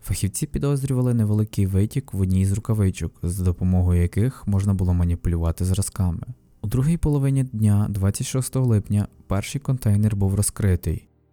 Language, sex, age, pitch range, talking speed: Ukrainian, male, 20-39, 95-115 Hz, 130 wpm